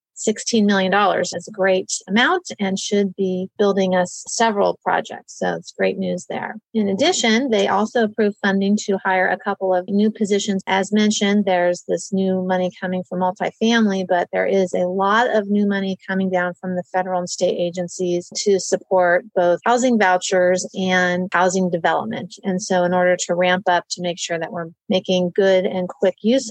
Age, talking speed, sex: 30-49, 180 wpm, female